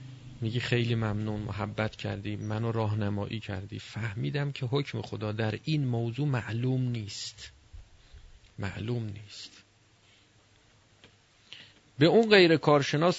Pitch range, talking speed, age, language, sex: 105-150 Hz, 105 wpm, 40-59, Persian, male